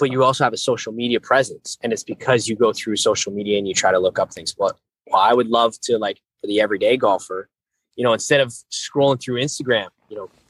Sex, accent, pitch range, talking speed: male, American, 120-145 Hz, 240 wpm